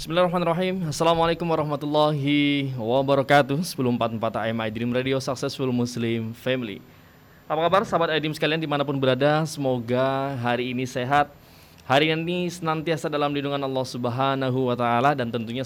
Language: Indonesian